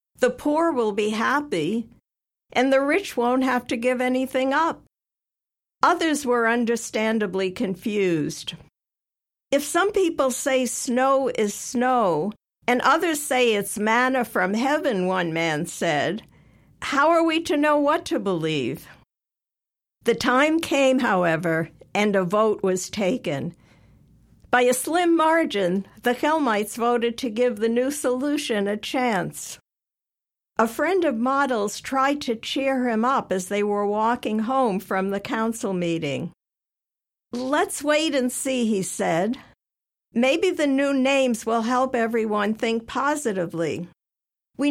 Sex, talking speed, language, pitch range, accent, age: female, 135 wpm, English, 200-270 Hz, American, 60-79